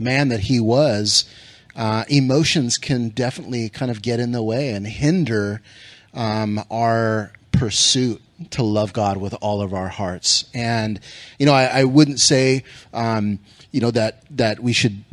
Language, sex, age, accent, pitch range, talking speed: English, male, 30-49, American, 110-130 Hz, 165 wpm